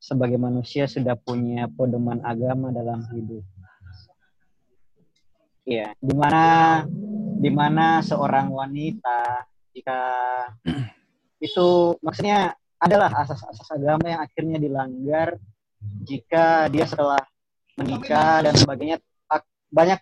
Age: 20-39